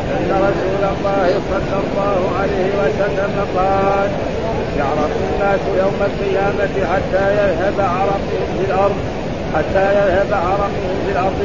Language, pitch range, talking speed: Arabic, 190-200 Hz, 115 wpm